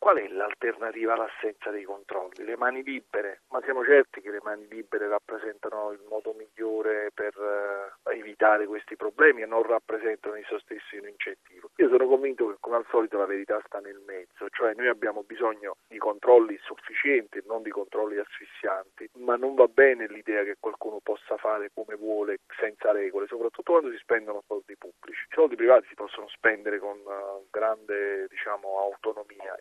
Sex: male